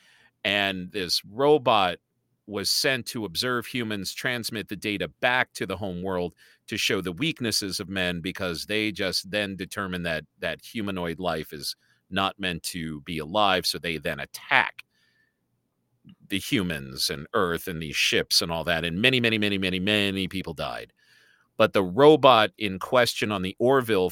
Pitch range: 90-120 Hz